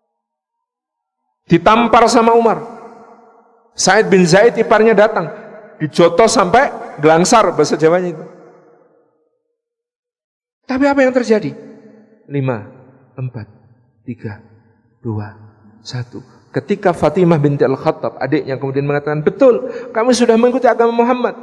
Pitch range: 140-230 Hz